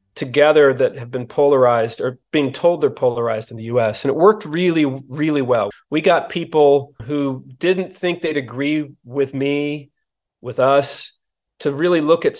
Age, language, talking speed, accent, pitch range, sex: 30-49, English, 170 wpm, American, 125-150 Hz, male